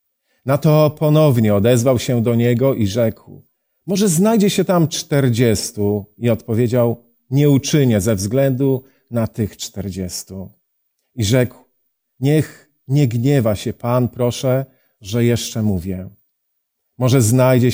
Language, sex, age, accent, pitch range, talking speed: Polish, male, 40-59, native, 110-140 Hz, 120 wpm